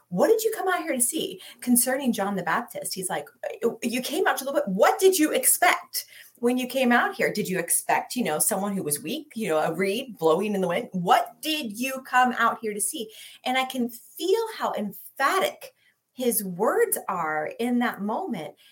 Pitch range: 210-295 Hz